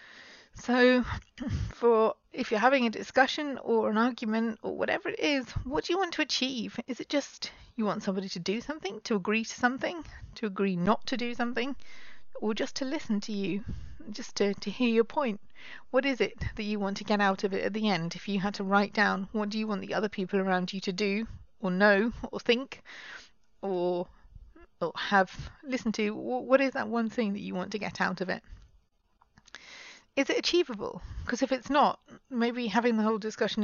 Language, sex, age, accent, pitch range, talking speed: English, female, 40-59, British, 200-250 Hz, 205 wpm